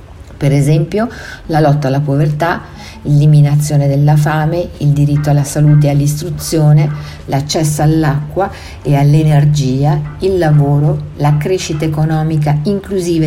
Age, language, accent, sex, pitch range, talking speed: 50-69, Italian, native, female, 145-170 Hz, 115 wpm